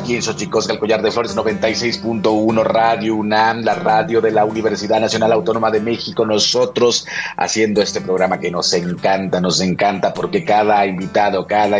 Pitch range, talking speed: 95-110 Hz, 165 wpm